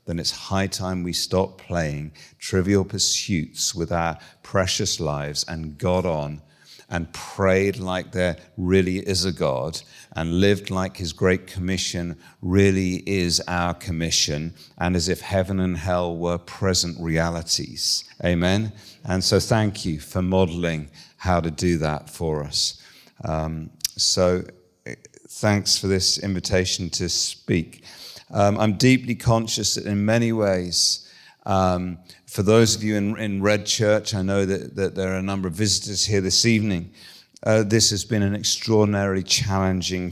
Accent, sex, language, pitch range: British, male, English, 90-105 Hz